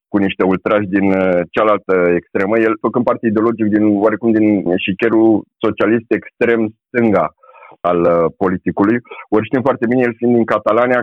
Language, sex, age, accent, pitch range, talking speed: Romanian, male, 30-49, native, 100-115 Hz, 145 wpm